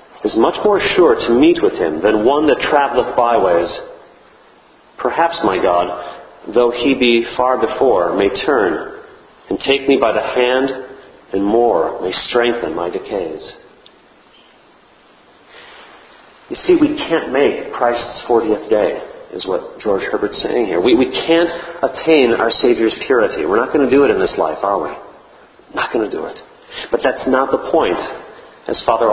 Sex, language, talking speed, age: male, English, 165 wpm, 40-59